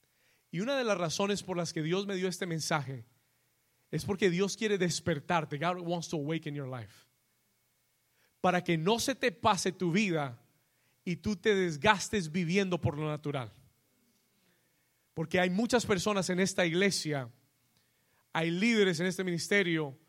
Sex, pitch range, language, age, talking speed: male, 155-210 Hz, Spanish, 30-49, 155 wpm